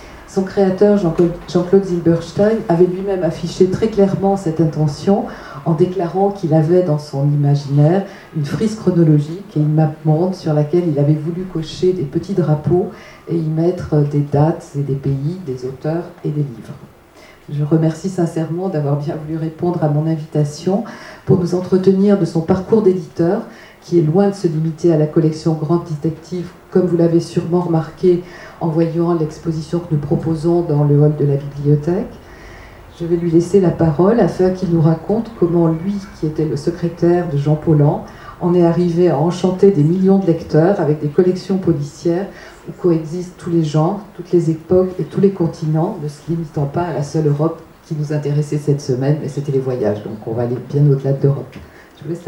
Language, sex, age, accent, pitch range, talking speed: French, female, 50-69, French, 155-180 Hz, 185 wpm